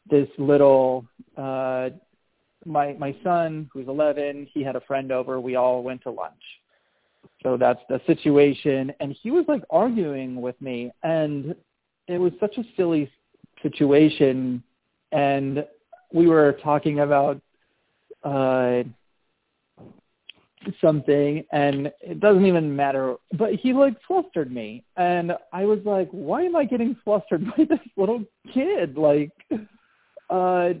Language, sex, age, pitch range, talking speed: English, male, 40-59, 135-185 Hz, 130 wpm